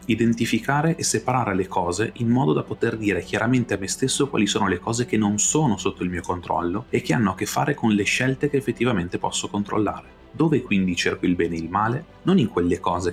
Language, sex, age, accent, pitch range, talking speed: Italian, male, 30-49, native, 90-115 Hz, 230 wpm